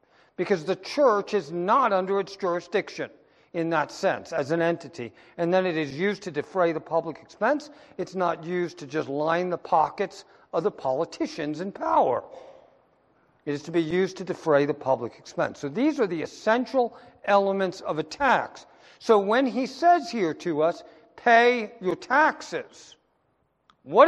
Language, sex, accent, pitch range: English, male, American, 170-245 Hz